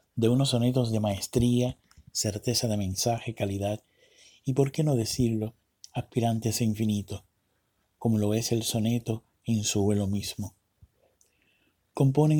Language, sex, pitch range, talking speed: Spanish, male, 105-125 Hz, 130 wpm